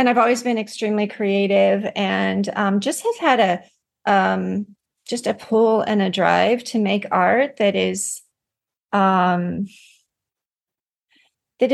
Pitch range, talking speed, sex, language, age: 205-255 Hz, 135 wpm, female, English, 40-59